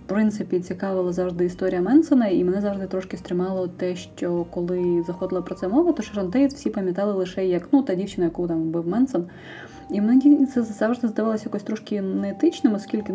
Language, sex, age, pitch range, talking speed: Ukrainian, female, 20-39, 180-215 Hz, 185 wpm